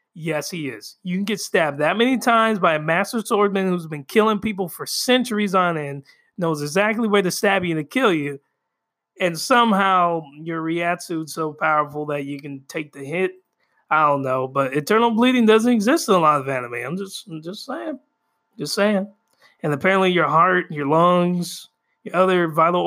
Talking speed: 195 wpm